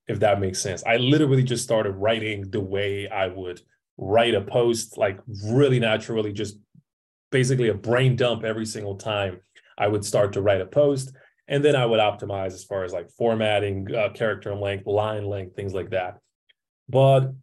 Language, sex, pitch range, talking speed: English, male, 100-130 Hz, 185 wpm